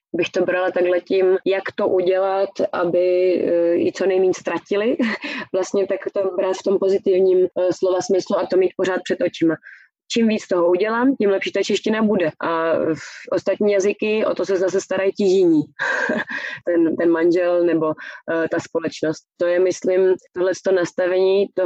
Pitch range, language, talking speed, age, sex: 165-190 Hz, Czech, 170 wpm, 20-39, female